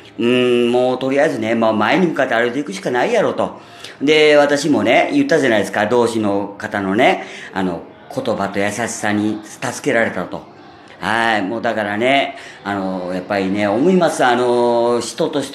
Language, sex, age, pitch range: Japanese, female, 40-59, 100-135 Hz